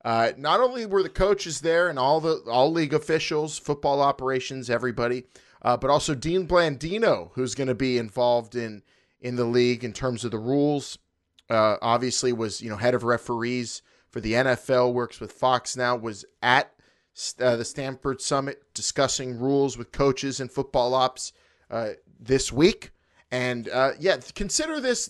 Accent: American